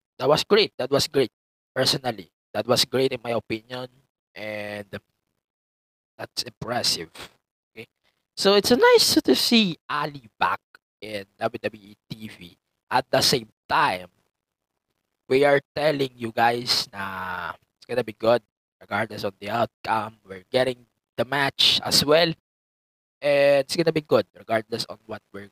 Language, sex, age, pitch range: English, male, 20-39, 110-150 Hz